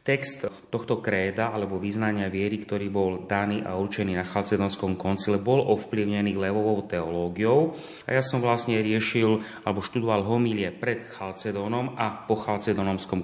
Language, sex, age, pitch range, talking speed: Slovak, male, 30-49, 100-115 Hz, 140 wpm